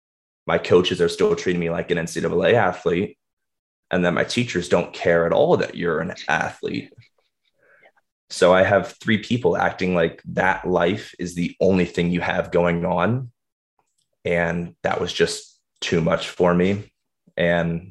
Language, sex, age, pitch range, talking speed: English, male, 20-39, 85-115 Hz, 160 wpm